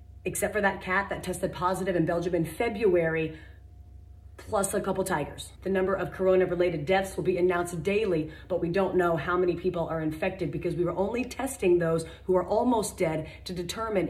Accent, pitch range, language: American, 175-200 Hz, English